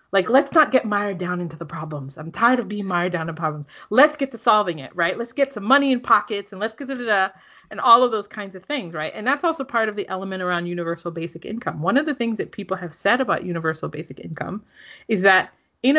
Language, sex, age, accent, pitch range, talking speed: English, female, 30-49, American, 170-225 Hz, 260 wpm